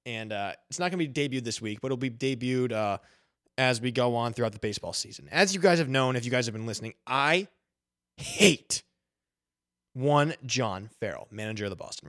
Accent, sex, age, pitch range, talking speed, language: American, male, 20-39, 110-145 Hz, 215 wpm, English